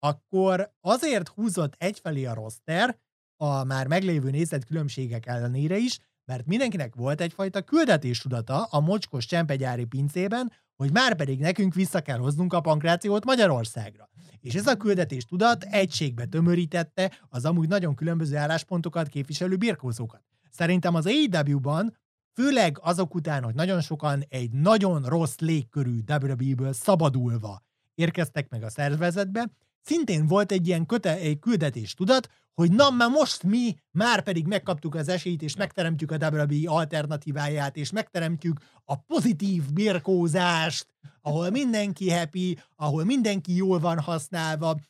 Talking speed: 140 wpm